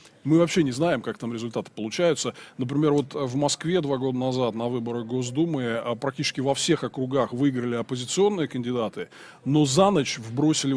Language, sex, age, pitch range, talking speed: Russian, male, 20-39, 125-155 Hz, 160 wpm